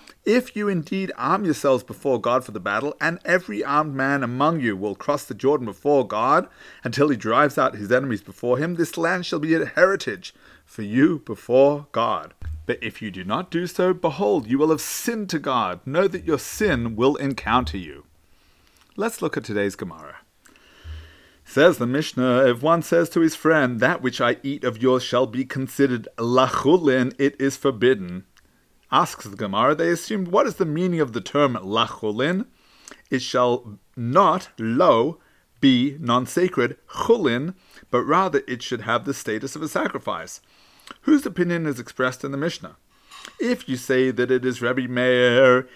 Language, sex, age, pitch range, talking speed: English, male, 30-49, 120-165 Hz, 175 wpm